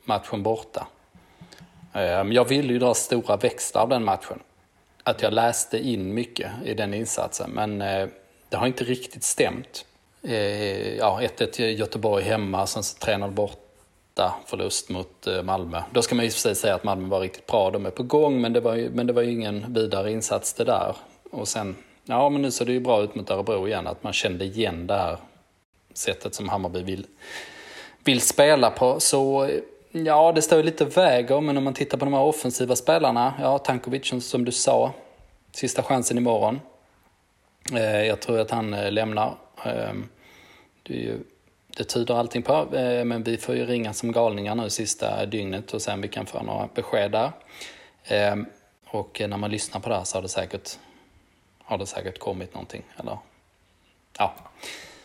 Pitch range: 100-125 Hz